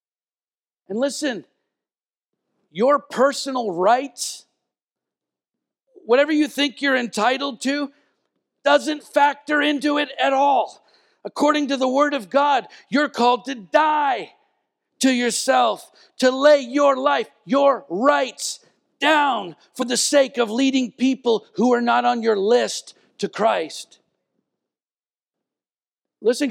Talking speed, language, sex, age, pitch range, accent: 115 wpm, English, male, 50-69, 235-285 Hz, American